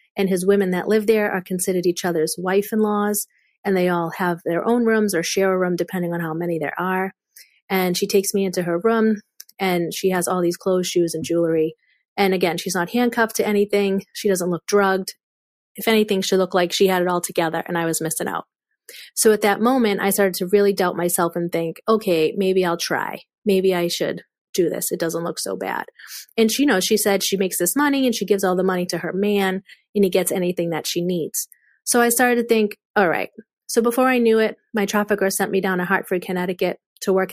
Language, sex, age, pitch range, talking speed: English, female, 30-49, 175-205 Hz, 230 wpm